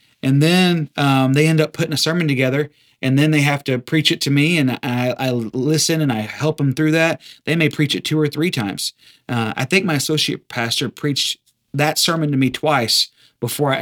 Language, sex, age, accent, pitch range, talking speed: English, male, 30-49, American, 125-155 Hz, 220 wpm